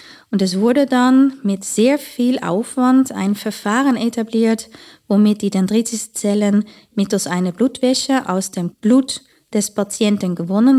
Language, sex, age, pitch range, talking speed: German, female, 20-39, 185-225 Hz, 135 wpm